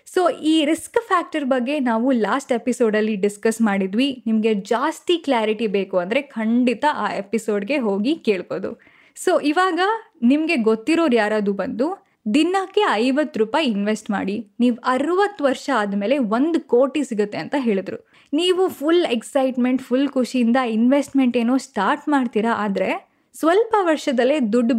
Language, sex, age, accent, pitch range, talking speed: Kannada, female, 10-29, native, 220-300 Hz, 130 wpm